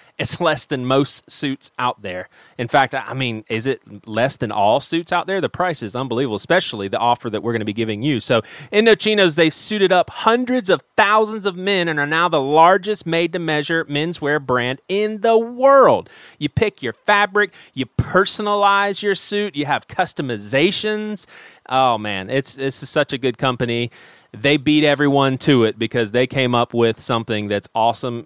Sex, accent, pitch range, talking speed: male, American, 130-205 Hz, 185 wpm